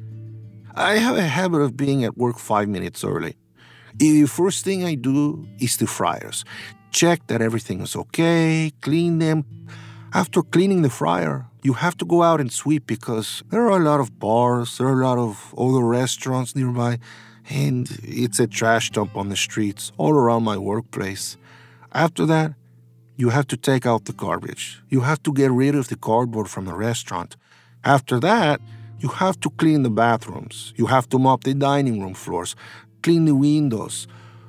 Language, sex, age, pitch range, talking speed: English, male, 50-69, 110-150 Hz, 180 wpm